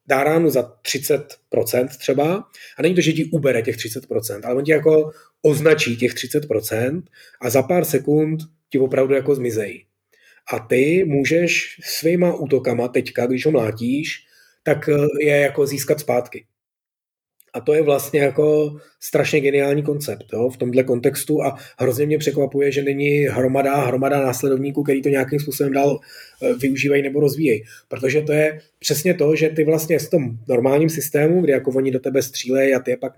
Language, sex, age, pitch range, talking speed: Czech, male, 30-49, 135-155 Hz, 165 wpm